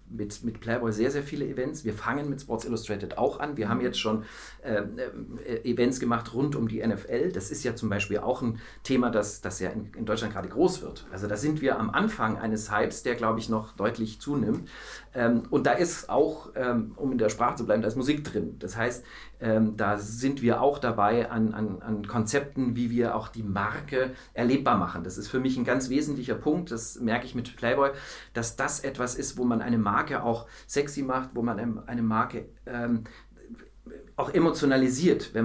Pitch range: 110-135 Hz